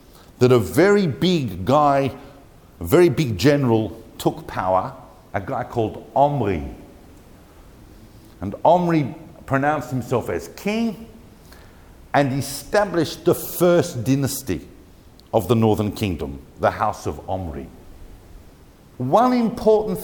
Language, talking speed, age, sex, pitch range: English, 110 wpm, 50-69, male, 95-160 Hz